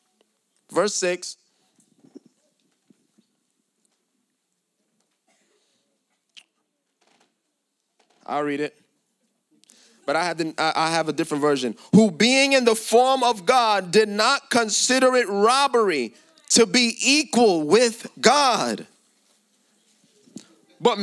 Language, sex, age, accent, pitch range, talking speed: English, male, 30-49, American, 225-285 Hz, 85 wpm